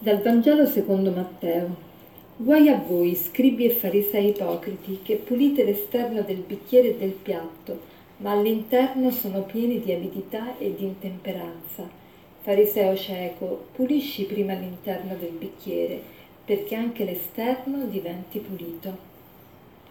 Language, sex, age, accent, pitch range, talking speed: Italian, female, 40-59, native, 190-215 Hz, 120 wpm